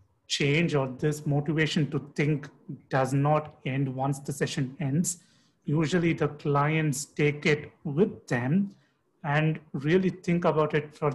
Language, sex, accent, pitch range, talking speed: English, male, Indian, 135-160 Hz, 140 wpm